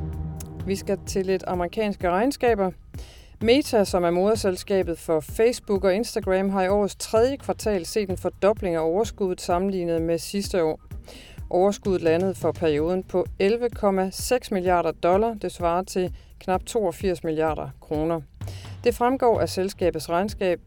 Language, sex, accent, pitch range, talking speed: Danish, female, native, 165-205 Hz, 140 wpm